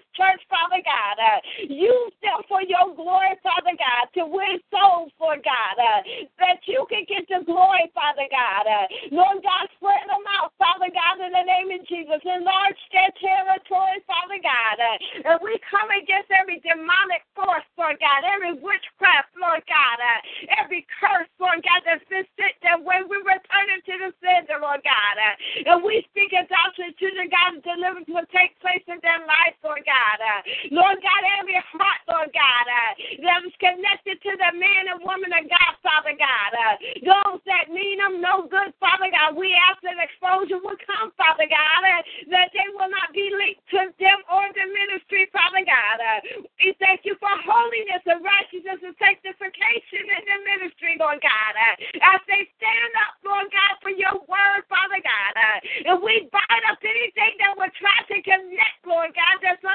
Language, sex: English, female